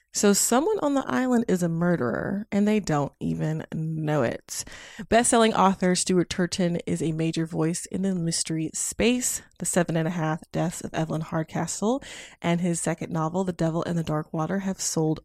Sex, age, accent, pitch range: female, 20-39, American, 165-225 Hz